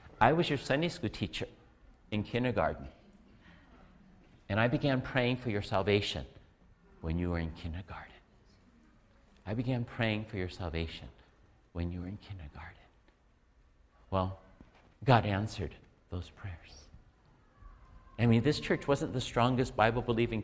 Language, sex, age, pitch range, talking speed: English, male, 50-69, 85-120 Hz, 130 wpm